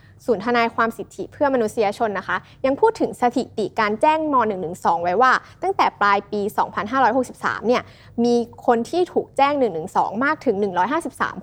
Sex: female